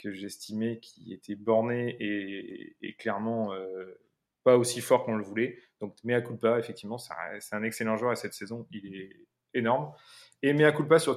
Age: 20-39